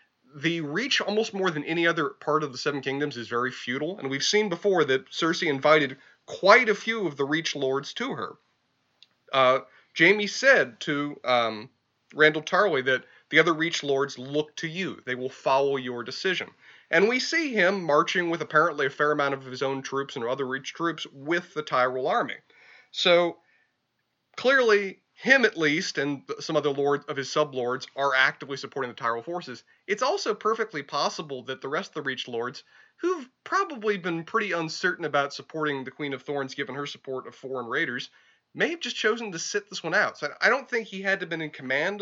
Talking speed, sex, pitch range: 200 wpm, male, 140-190 Hz